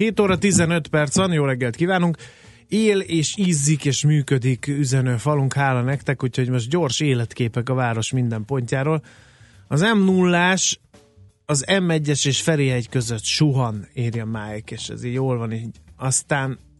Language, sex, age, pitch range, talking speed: Hungarian, male, 30-49, 115-145 Hz, 165 wpm